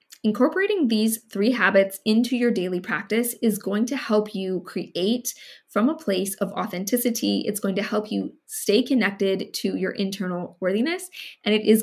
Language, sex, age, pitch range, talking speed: English, female, 20-39, 195-235 Hz, 165 wpm